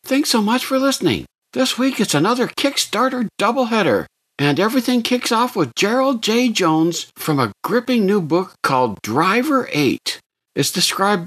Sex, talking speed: male, 155 wpm